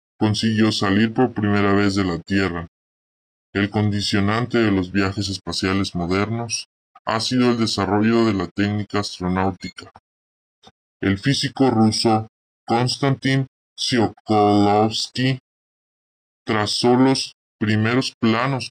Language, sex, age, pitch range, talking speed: Spanish, female, 20-39, 95-110 Hz, 105 wpm